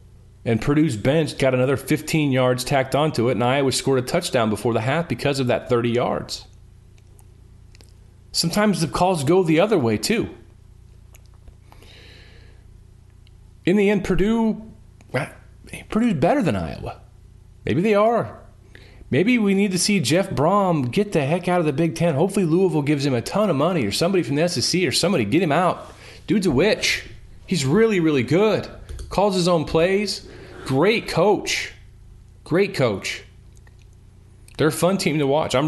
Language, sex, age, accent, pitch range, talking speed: English, male, 40-59, American, 100-150 Hz, 165 wpm